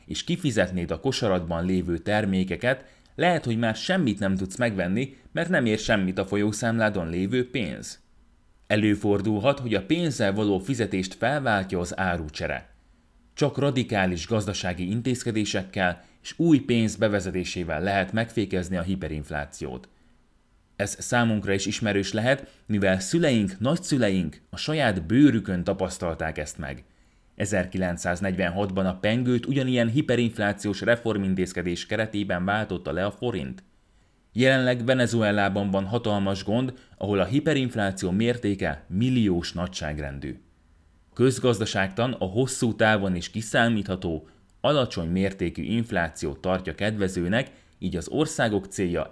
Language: Hungarian